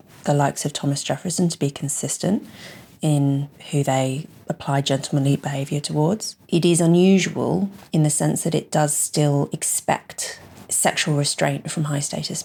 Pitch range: 140-175 Hz